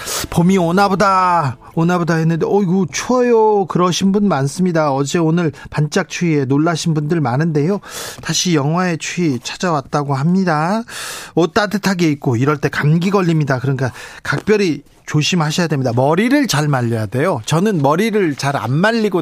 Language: Korean